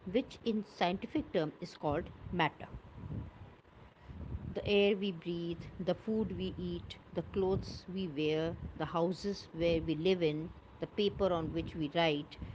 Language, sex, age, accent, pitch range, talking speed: English, female, 50-69, Indian, 150-210 Hz, 150 wpm